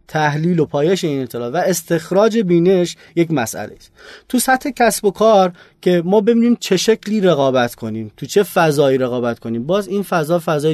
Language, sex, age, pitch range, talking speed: Persian, male, 30-49, 140-185 Hz, 180 wpm